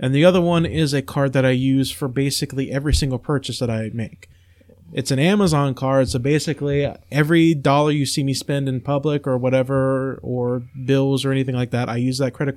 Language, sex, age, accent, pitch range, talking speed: English, male, 20-39, American, 115-145 Hz, 210 wpm